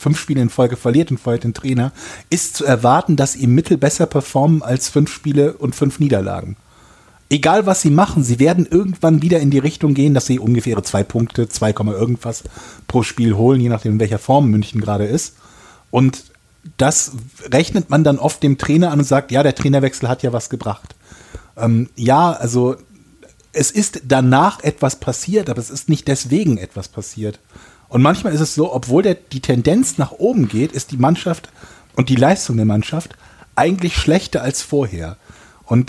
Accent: German